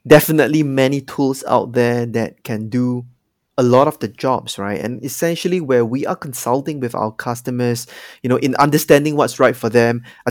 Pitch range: 120-150 Hz